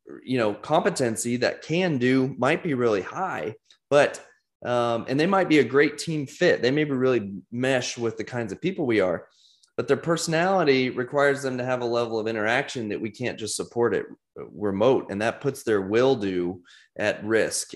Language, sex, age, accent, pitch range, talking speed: English, male, 20-39, American, 110-140 Hz, 195 wpm